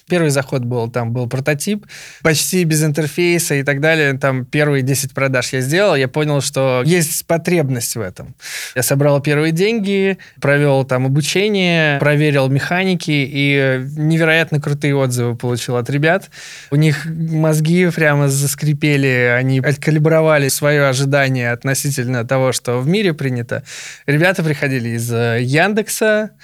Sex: male